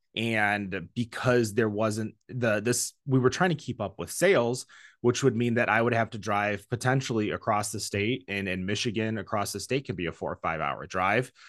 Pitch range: 95-125 Hz